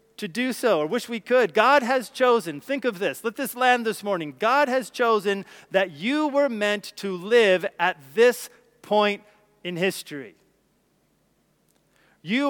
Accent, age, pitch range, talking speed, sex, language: American, 40-59, 185-235 Hz, 160 wpm, male, English